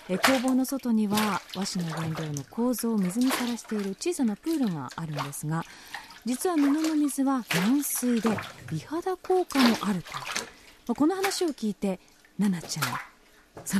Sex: female